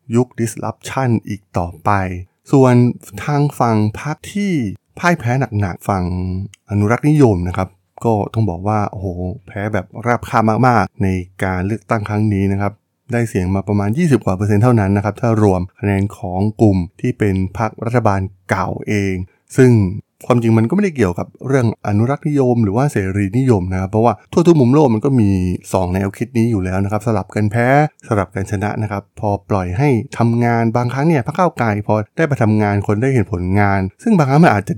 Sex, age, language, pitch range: male, 20-39, Thai, 100-125 Hz